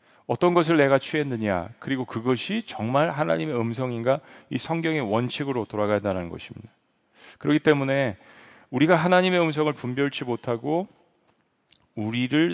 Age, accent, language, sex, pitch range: 40-59, native, Korean, male, 110-150 Hz